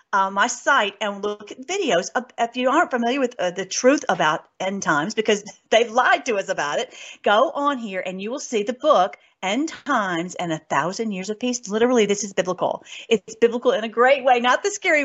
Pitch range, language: 180-240 Hz, English